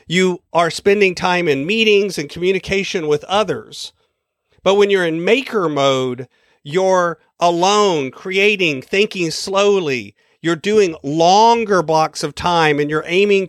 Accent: American